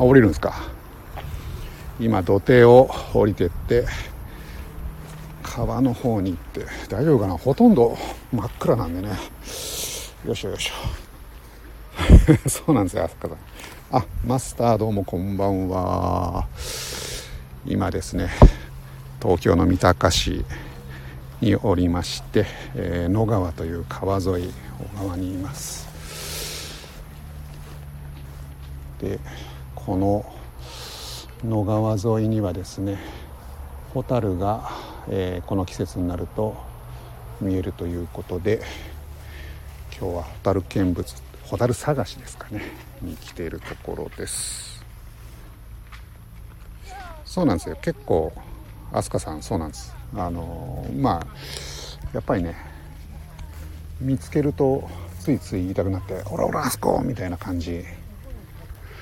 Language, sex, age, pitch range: Japanese, male, 60-79, 75-100 Hz